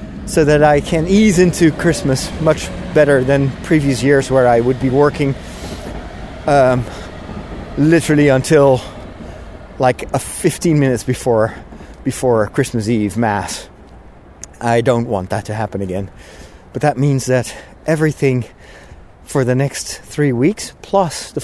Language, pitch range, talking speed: English, 110-155 Hz, 130 wpm